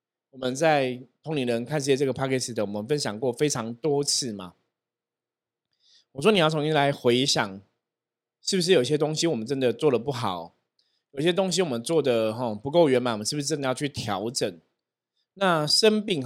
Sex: male